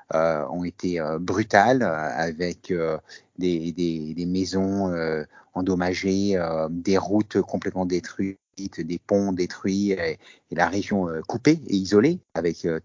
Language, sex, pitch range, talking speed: French, male, 85-100 Hz, 150 wpm